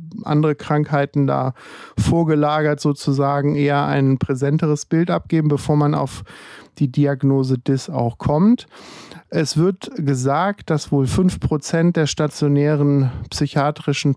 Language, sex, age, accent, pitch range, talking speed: German, male, 50-69, German, 130-150 Hz, 115 wpm